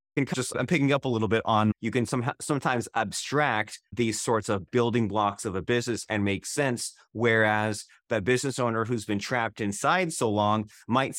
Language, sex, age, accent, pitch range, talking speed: English, male, 30-49, American, 110-145 Hz, 190 wpm